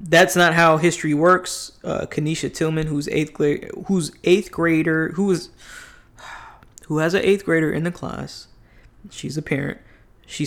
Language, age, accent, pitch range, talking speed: English, 20-39, American, 145-180 Hz, 155 wpm